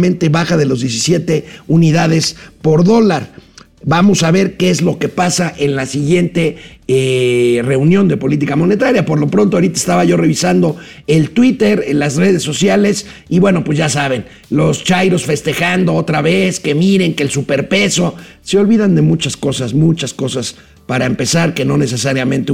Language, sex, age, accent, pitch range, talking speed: Spanish, male, 50-69, Mexican, 140-175 Hz, 170 wpm